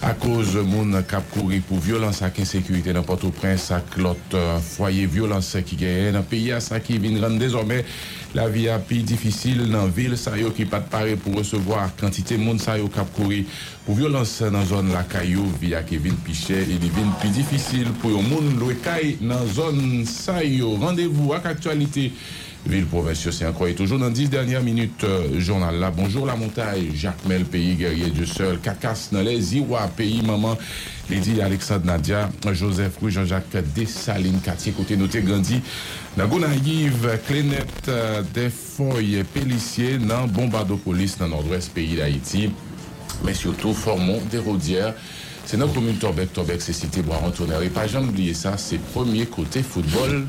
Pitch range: 95-120 Hz